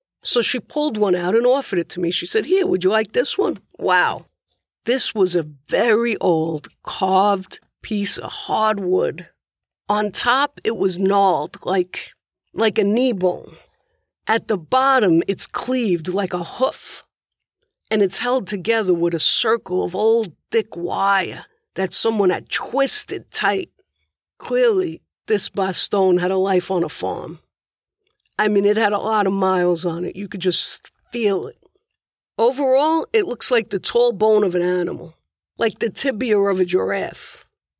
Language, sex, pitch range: English, female, 190-300 Hz